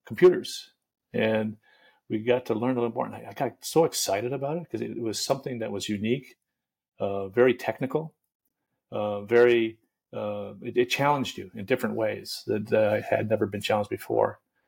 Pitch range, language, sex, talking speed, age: 105-120 Hz, English, male, 190 wpm, 40-59